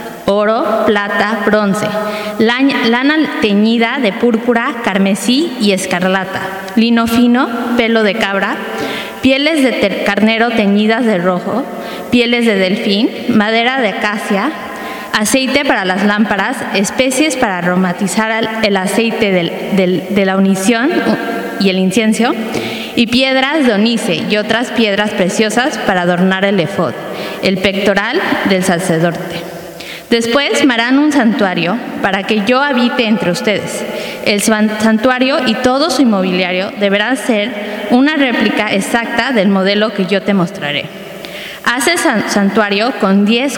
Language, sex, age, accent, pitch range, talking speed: English, female, 20-39, Mexican, 195-240 Hz, 130 wpm